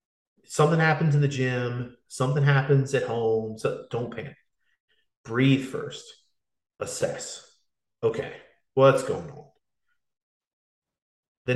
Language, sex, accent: English, male, American